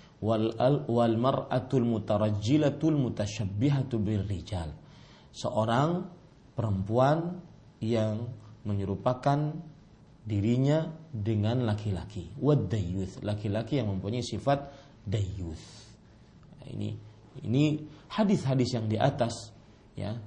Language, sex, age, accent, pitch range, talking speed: Indonesian, male, 40-59, native, 105-140 Hz, 70 wpm